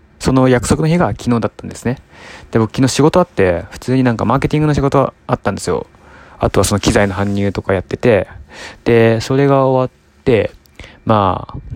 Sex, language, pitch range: male, Japanese, 95-125 Hz